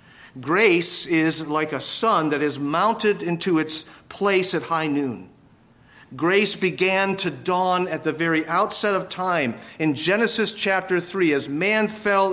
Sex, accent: male, American